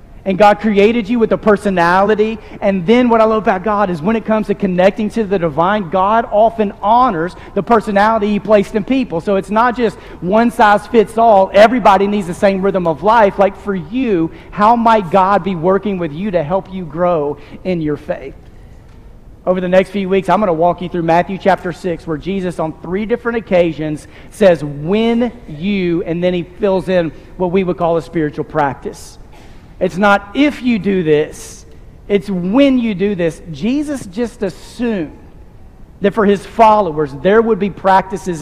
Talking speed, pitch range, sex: 190 wpm, 155-205 Hz, male